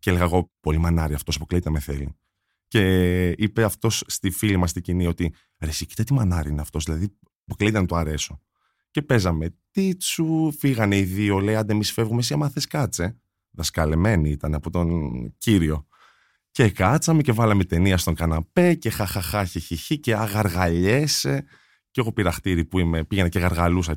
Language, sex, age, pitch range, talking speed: Greek, male, 20-39, 85-140 Hz, 170 wpm